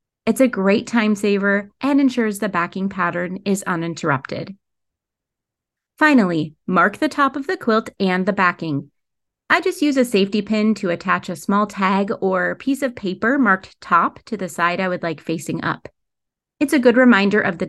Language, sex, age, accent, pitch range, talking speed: English, female, 30-49, American, 185-245 Hz, 180 wpm